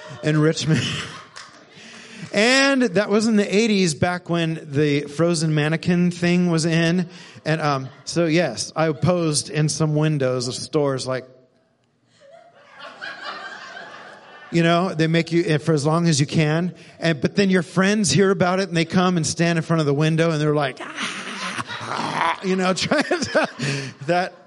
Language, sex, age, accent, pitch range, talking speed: English, male, 40-59, American, 145-180 Hz, 165 wpm